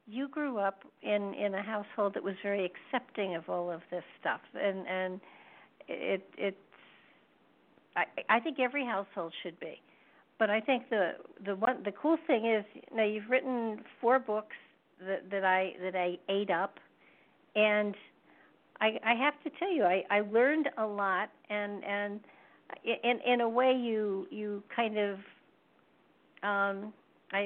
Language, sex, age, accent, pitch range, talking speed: English, female, 50-69, American, 185-220 Hz, 160 wpm